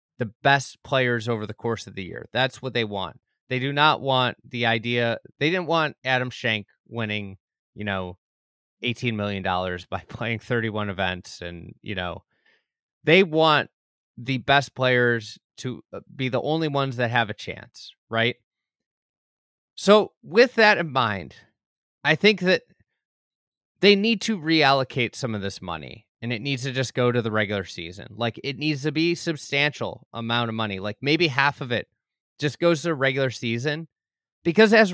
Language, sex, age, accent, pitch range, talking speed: English, male, 30-49, American, 115-155 Hz, 170 wpm